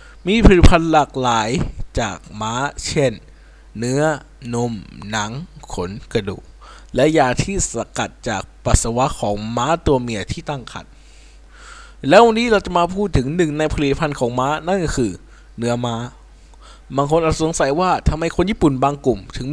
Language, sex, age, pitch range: Thai, male, 20-39, 120-155 Hz